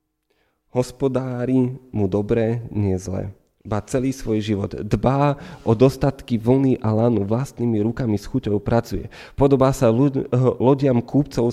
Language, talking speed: Slovak, 125 wpm